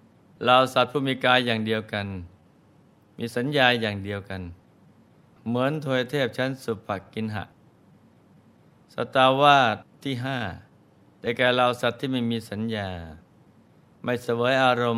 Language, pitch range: Thai, 105-125 Hz